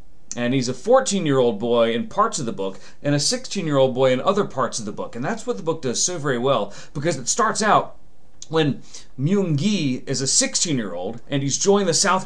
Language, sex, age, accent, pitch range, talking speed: English, male, 40-59, American, 130-170 Hz, 210 wpm